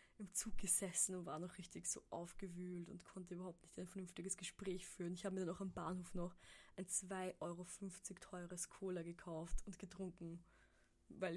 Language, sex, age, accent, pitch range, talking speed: German, female, 20-39, German, 175-195 Hz, 180 wpm